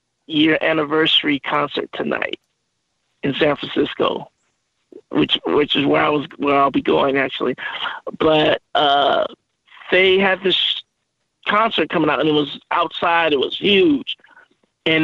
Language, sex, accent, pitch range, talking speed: English, male, American, 145-185 Hz, 135 wpm